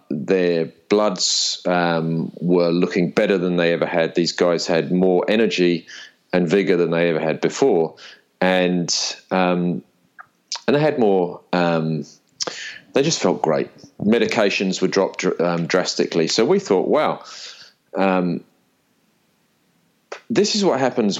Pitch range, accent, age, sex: 85-95 Hz, British, 40-59, male